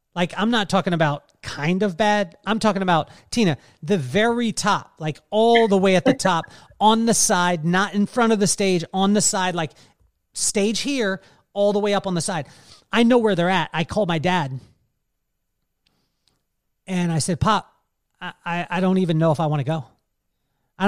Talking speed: 195 wpm